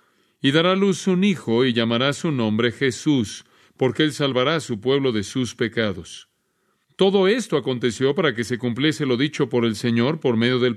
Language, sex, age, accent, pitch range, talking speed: Spanish, male, 40-59, Mexican, 120-160 Hz, 190 wpm